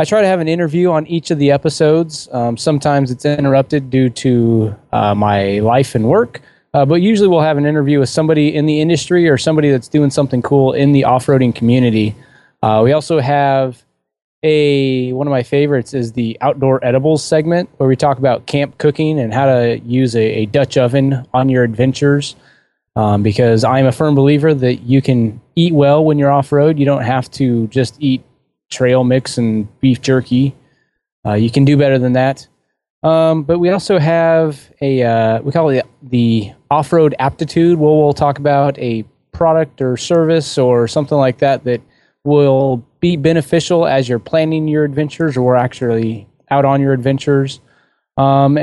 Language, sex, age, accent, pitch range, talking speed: English, male, 20-39, American, 125-155 Hz, 185 wpm